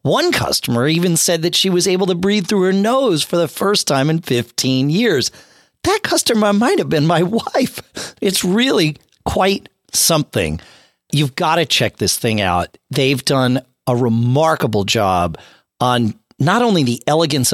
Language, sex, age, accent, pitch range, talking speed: English, male, 40-59, American, 125-180 Hz, 165 wpm